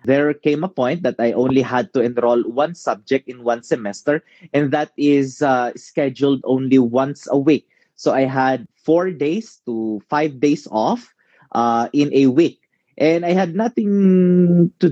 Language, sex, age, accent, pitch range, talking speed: English, male, 20-39, Filipino, 125-165 Hz, 170 wpm